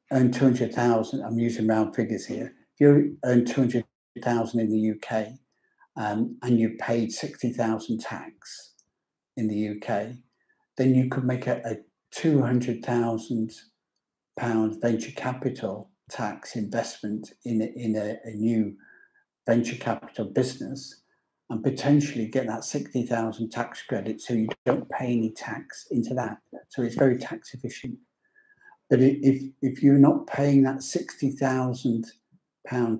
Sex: male